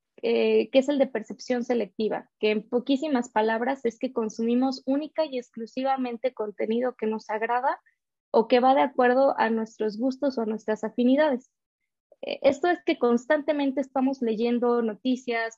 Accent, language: Mexican, Spanish